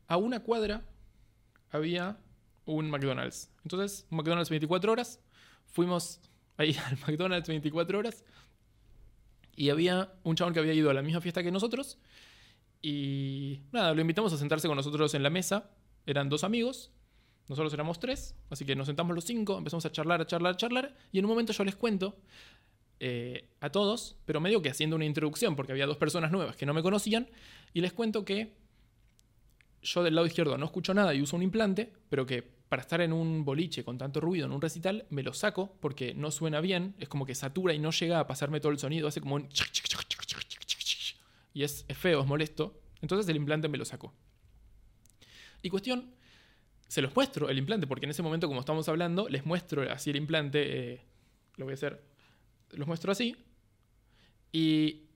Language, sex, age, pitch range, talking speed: Spanish, male, 20-39, 135-180 Hz, 190 wpm